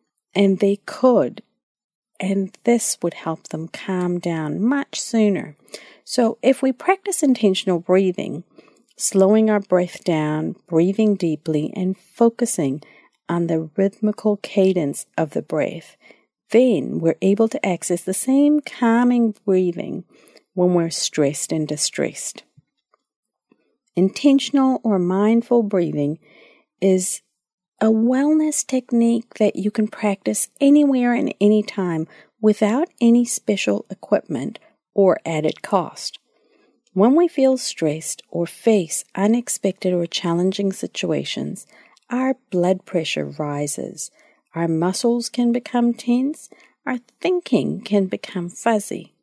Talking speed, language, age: 115 wpm, English, 50-69